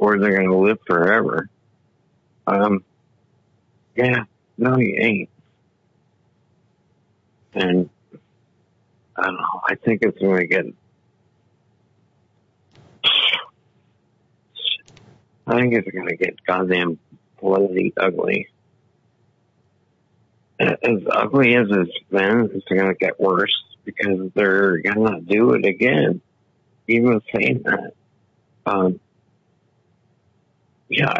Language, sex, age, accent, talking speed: English, male, 60-79, American, 100 wpm